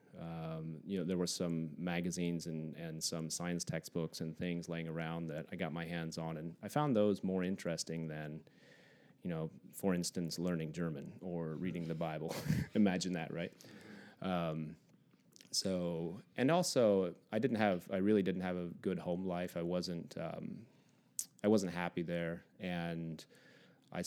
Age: 30-49